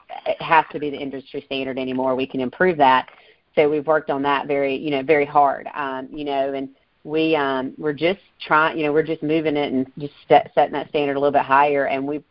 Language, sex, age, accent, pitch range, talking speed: English, female, 40-59, American, 140-155 Hz, 240 wpm